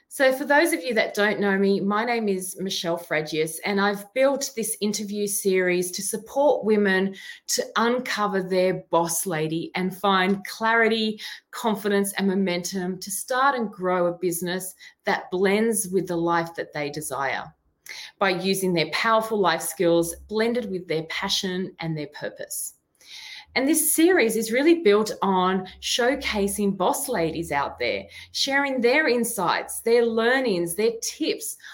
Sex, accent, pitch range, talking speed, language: female, Australian, 180-230 Hz, 150 wpm, English